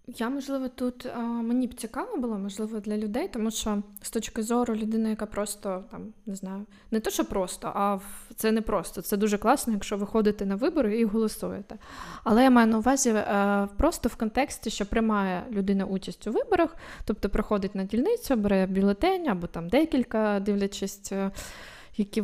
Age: 20-39